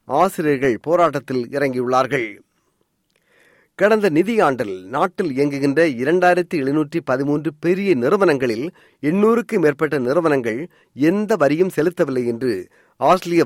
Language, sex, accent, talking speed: Tamil, male, native, 85 wpm